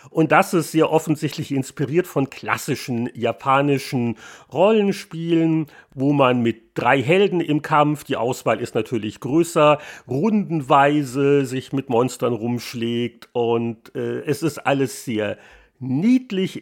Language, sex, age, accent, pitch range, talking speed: German, male, 40-59, German, 135-170 Hz, 125 wpm